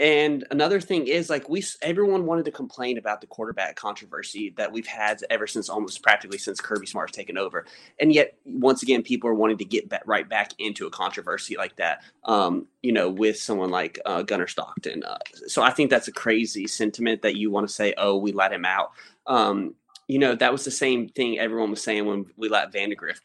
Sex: male